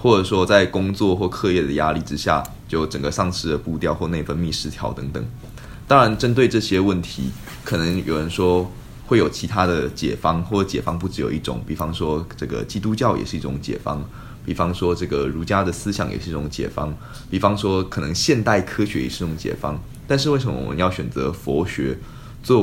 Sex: male